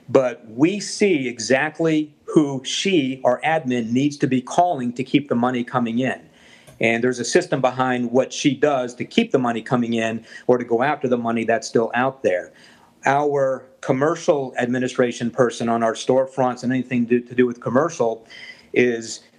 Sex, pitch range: male, 125-145 Hz